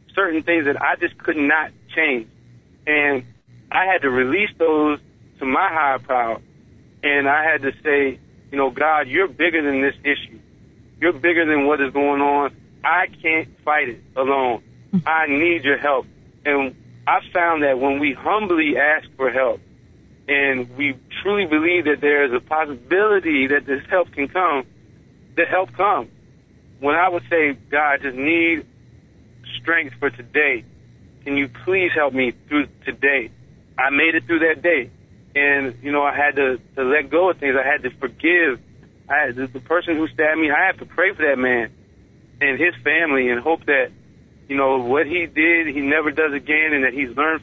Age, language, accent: 40-59, English, American